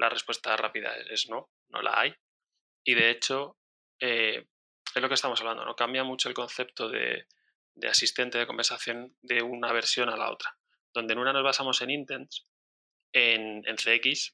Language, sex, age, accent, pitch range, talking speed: Spanish, male, 20-39, Spanish, 115-125 Hz, 180 wpm